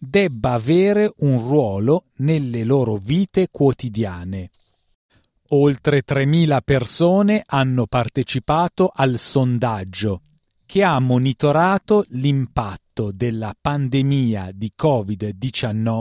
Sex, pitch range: male, 115-150 Hz